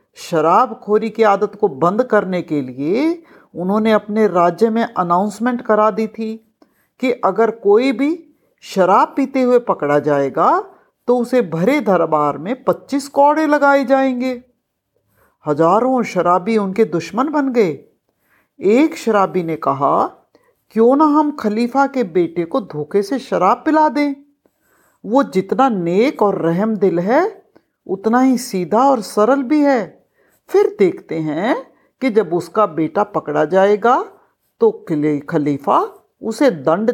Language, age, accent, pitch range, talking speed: Hindi, 50-69, native, 175-275 Hz, 135 wpm